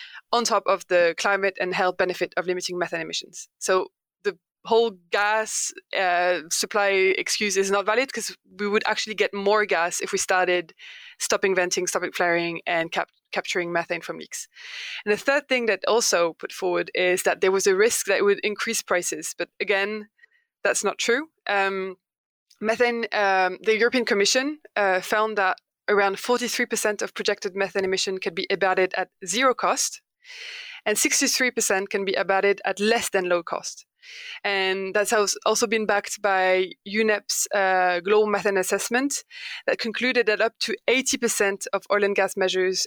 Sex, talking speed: female, 165 wpm